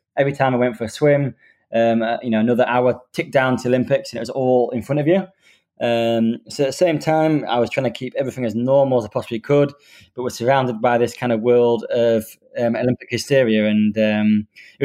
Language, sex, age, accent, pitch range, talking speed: English, male, 20-39, British, 115-135 Hz, 230 wpm